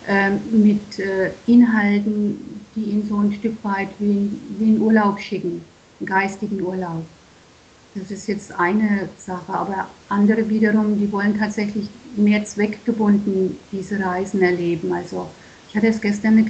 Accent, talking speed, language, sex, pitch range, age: German, 145 wpm, German, female, 195-215 Hz, 50-69